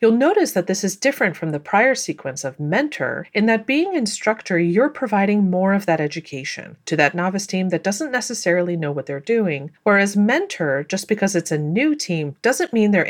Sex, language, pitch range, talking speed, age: female, English, 170-270 Hz, 200 wpm, 40-59